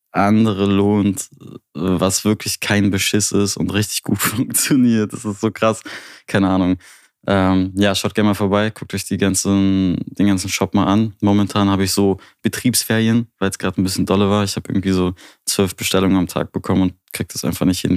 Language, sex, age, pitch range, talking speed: German, male, 20-39, 95-110 Hz, 195 wpm